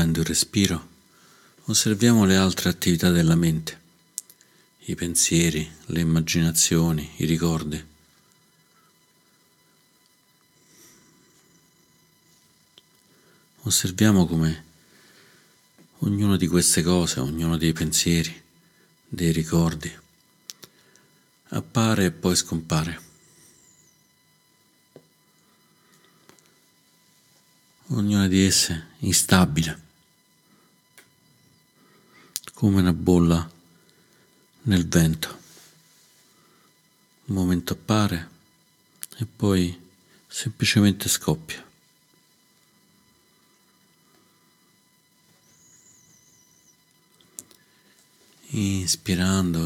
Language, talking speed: Italian, 55 wpm